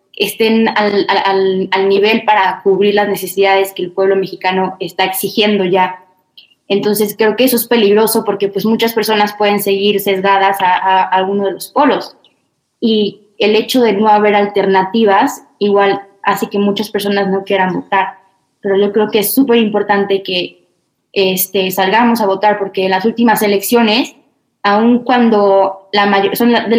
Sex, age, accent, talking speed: female, 20-39, Mexican, 160 wpm